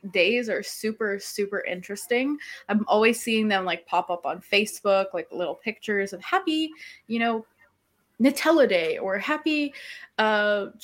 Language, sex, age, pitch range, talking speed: English, female, 20-39, 185-220 Hz, 145 wpm